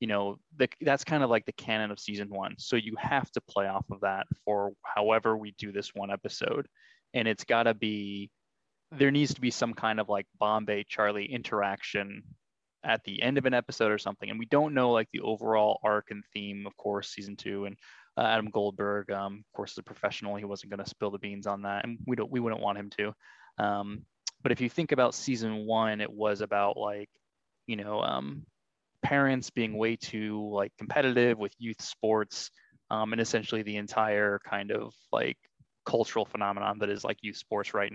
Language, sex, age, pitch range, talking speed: English, male, 20-39, 100-120 Hz, 205 wpm